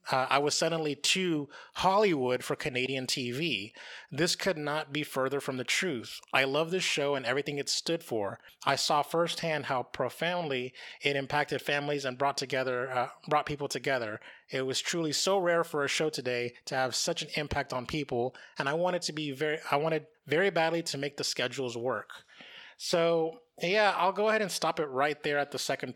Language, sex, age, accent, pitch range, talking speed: English, male, 30-49, American, 130-155 Hz, 195 wpm